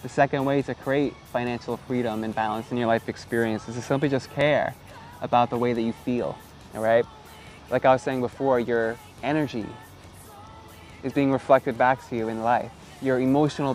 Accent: American